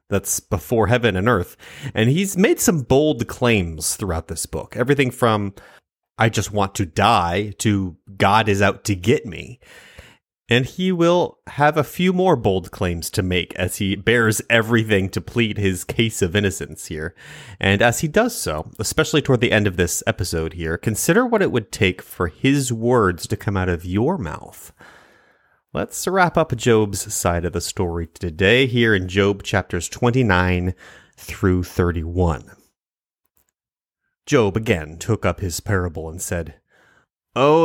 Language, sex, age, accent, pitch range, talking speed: English, male, 30-49, American, 95-140 Hz, 165 wpm